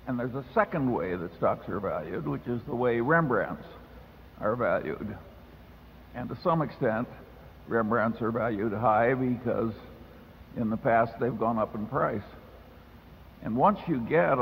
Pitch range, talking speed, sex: 85-130 Hz, 155 wpm, male